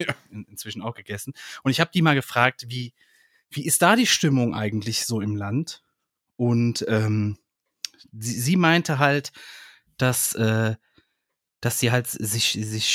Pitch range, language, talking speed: 110-145 Hz, German, 145 wpm